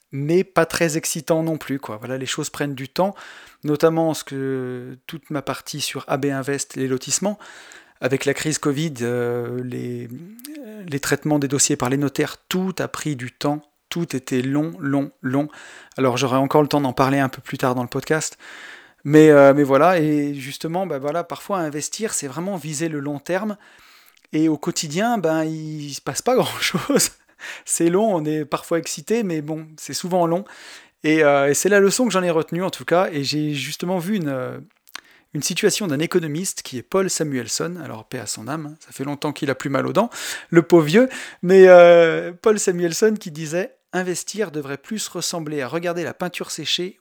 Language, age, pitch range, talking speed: French, 30-49, 140-175 Hz, 200 wpm